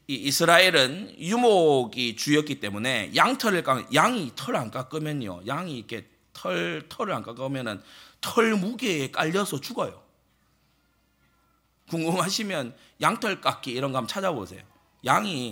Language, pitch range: Korean, 130-190 Hz